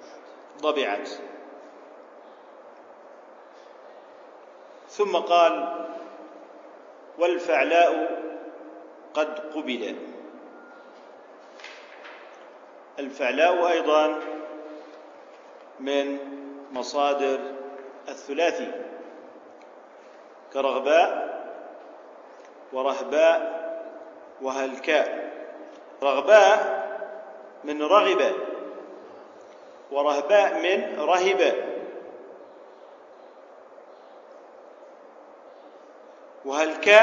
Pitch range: 140-170 Hz